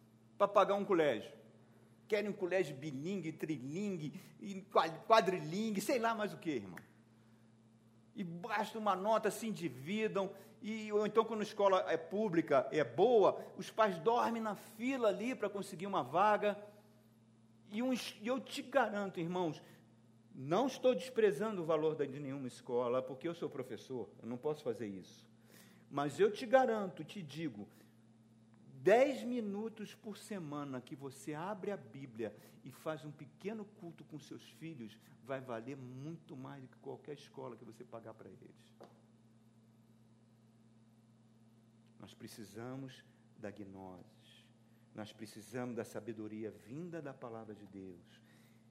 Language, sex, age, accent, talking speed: Portuguese, male, 50-69, Brazilian, 140 wpm